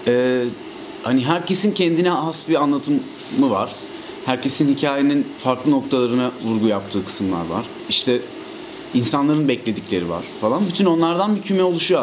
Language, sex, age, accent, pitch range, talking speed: Turkish, male, 40-59, native, 125-180 Hz, 130 wpm